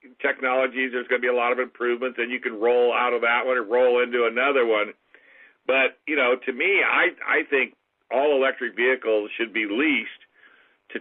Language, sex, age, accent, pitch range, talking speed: English, male, 50-69, American, 115-130 Hz, 200 wpm